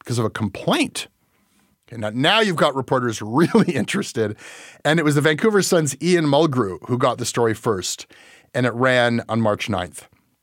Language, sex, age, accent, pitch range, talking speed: English, male, 30-49, American, 115-160 Hz, 180 wpm